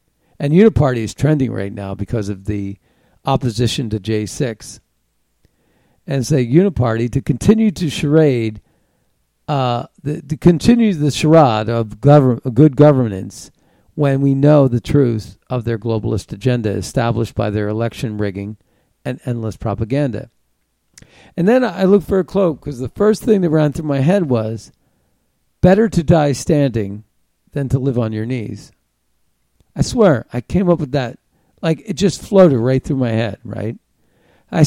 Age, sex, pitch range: 50-69, male, 110-160 Hz